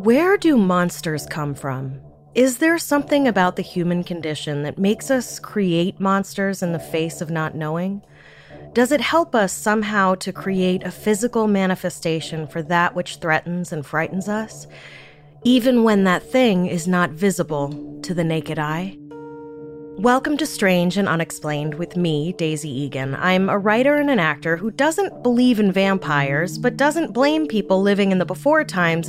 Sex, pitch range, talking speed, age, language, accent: female, 155-220 Hz, 165 wpm, 30-49, English, American